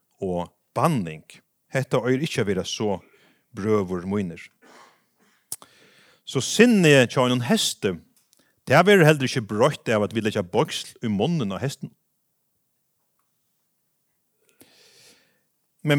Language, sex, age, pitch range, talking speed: English, male, 40-59, 120-170 Hz, 100 wpm